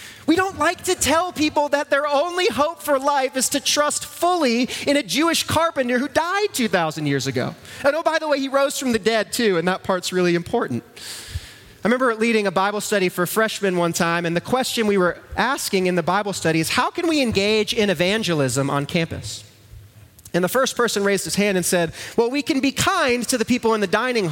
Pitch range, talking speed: 180-275 Hz, 220 wpm